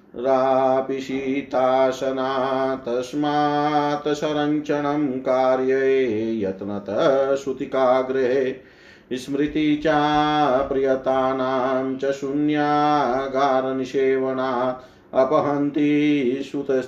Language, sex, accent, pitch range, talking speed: Hindi, male, native, 130-150 Hz, 40 wpm